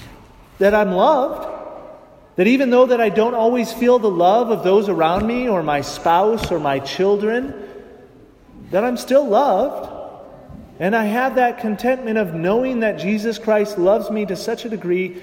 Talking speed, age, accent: 170 wpm, 30-49, American